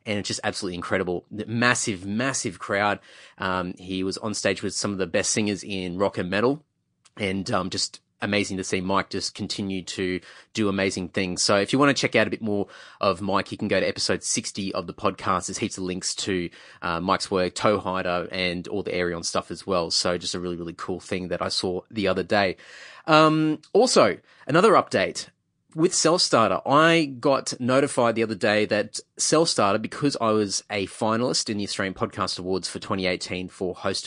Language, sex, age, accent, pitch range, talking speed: English, male, 30-49, Australian, 95-115 Hz, 205 wpm